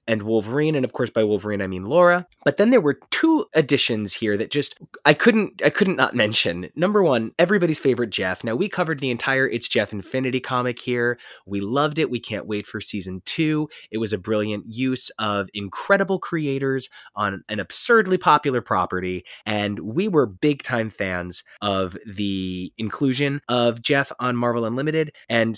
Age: 20-39